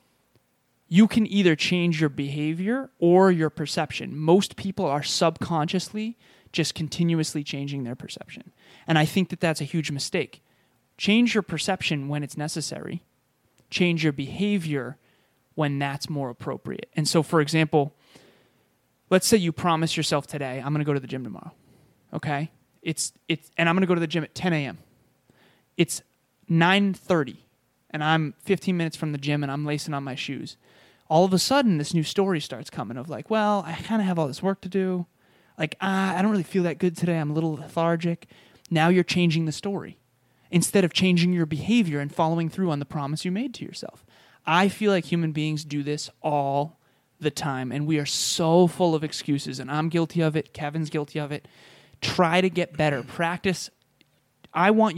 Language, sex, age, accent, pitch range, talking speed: English, male, 20-39, American, 150-180 Hz, 190 wpm